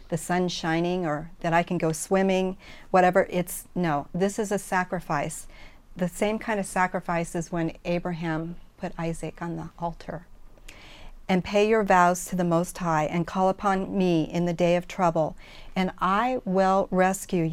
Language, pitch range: English, 170-195 Hz